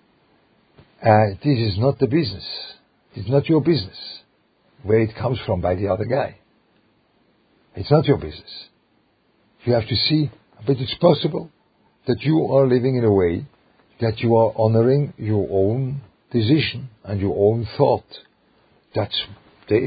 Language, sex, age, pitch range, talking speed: English, male, 50-69, 105-135 Hz, 145 wpm